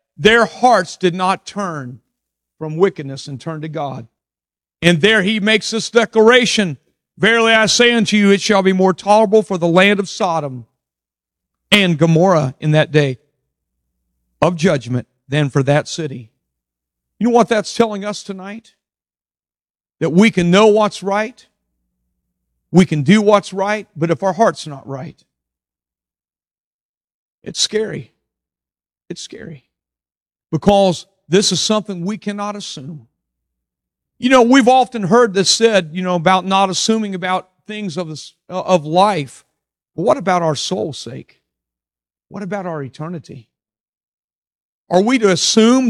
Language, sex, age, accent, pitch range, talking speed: English, male, 50-69, American, 140-220 Hz, 145 wpm